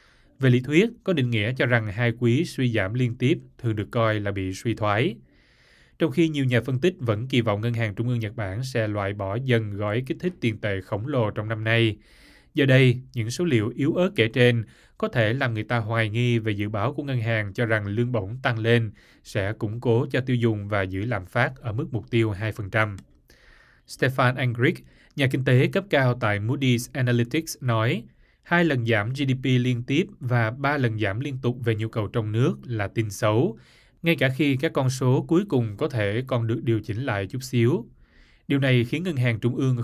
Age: 20-39